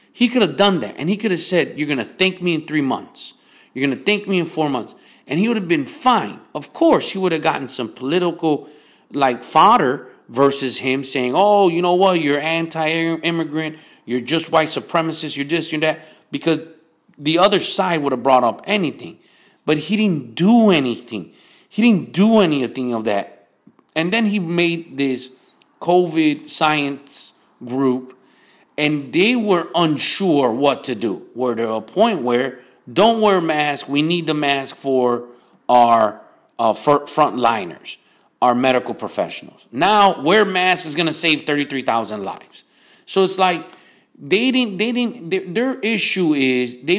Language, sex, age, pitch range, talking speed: English, male, 40-59, 130-190 Hz, 170 wpm